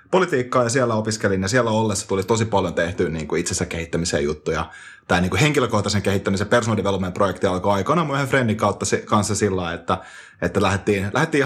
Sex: male